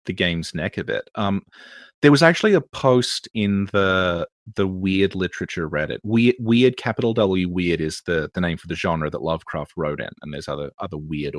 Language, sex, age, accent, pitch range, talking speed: English, male, 30-49, Australian, 90-120 Hz, 205 wpm